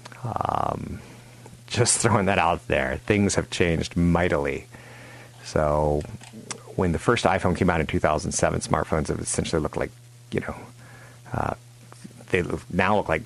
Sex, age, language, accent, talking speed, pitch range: male, 30-49, English, American, 140 wpm, 80-120 Hz